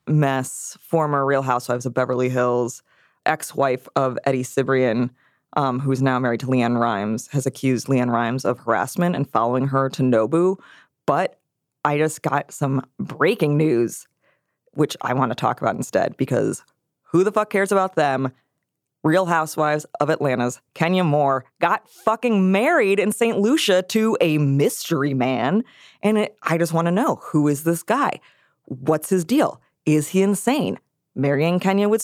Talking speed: 165 wpm